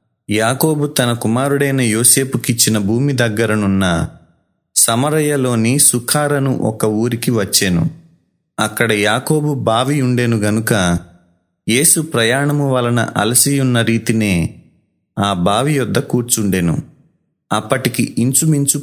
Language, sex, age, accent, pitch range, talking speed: Telugu, male, 30-49, native, 105-135 Hz, 85 wpm